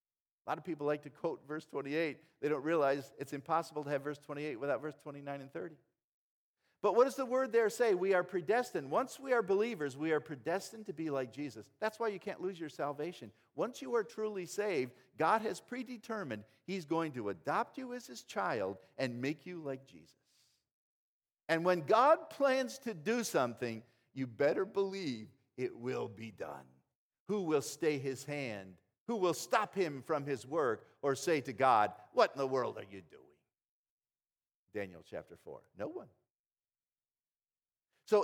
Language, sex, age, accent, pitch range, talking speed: English, male, 50-69, American, 140-200 Hz, 180 wpm